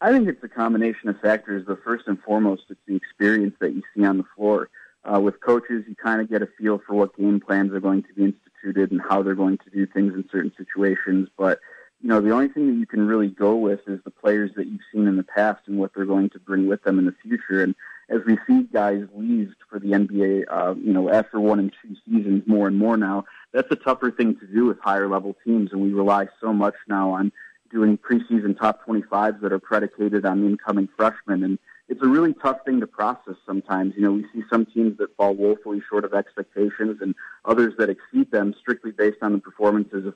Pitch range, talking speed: 100-110 Hz, 240 wpm